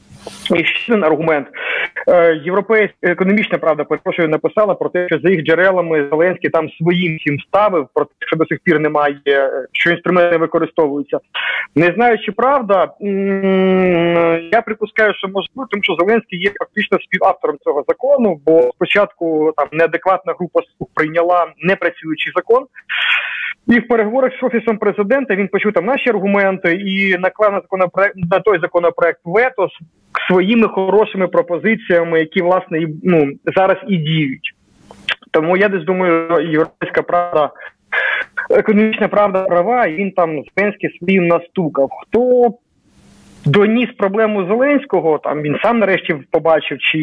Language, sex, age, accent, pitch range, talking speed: Ukrainian, male, 30-49, native, 160-205 Hz, 140 wpm